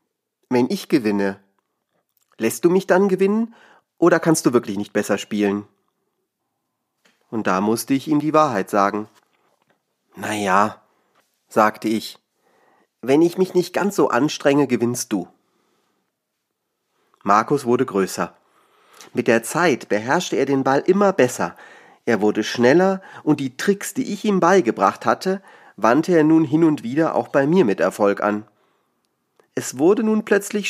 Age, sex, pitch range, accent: 30-49, male, 110-175 Hz, German